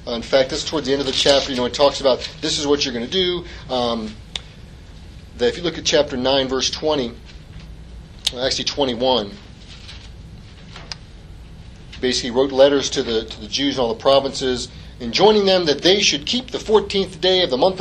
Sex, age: male, 30-49